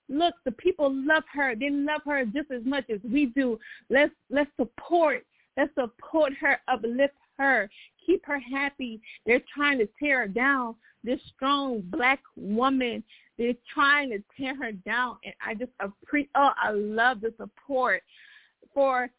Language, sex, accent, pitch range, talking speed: English, female, American, 230-280 Hz, 160 wpm